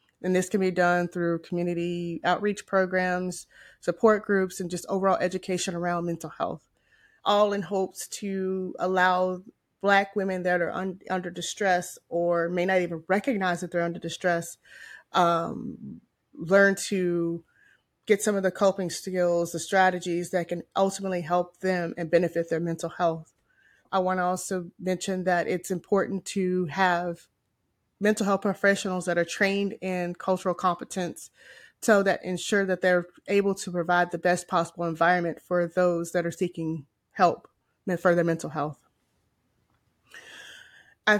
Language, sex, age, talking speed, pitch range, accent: English, female, 20-39, 145 wpm, 170-190 Hz, American